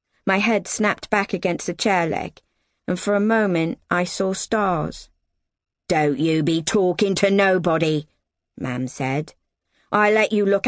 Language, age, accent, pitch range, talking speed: English, 40-59, British, 155-205 Hz, 150 wpm